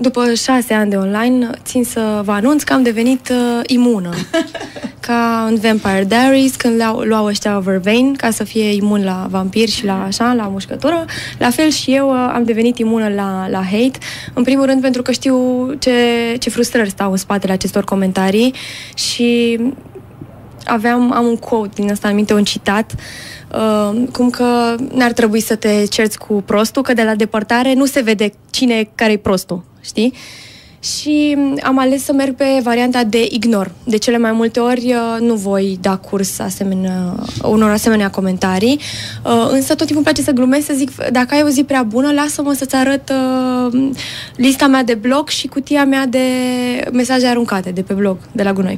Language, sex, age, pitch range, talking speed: Romanian, female, 20-39, 210-260 Hz, 185 wpm